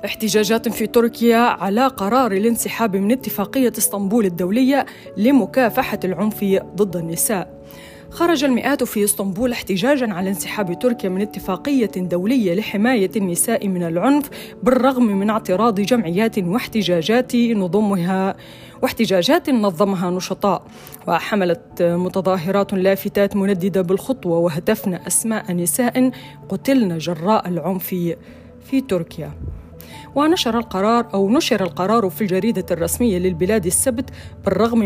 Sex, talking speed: female, 105 wpm